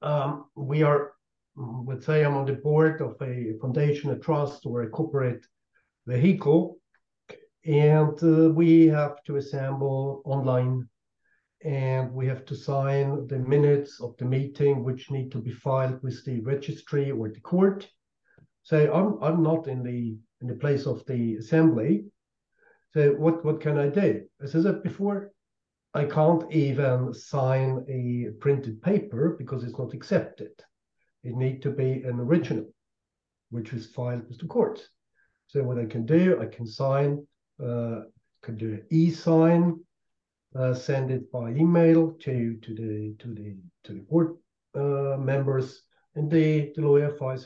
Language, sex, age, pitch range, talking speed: English, male, 50-69, 125-155 Hz, 155 wpm